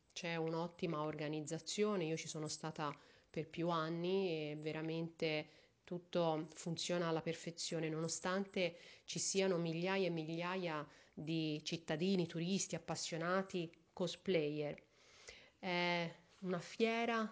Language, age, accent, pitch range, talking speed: Italian, 30-49, native, 160-180 Hz, 105 wpm